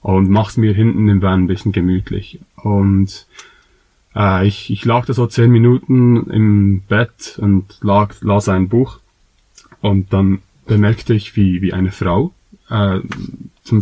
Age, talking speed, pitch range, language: 30-49, 150 wpm, 95-115 Hz, German